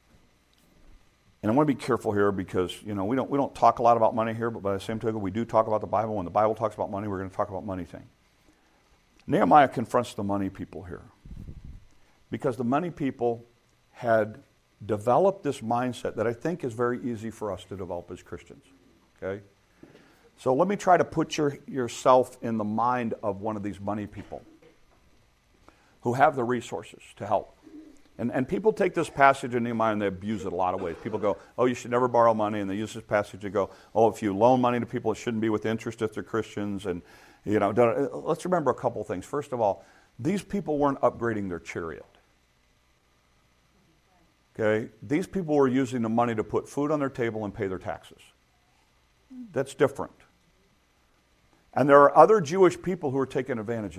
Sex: male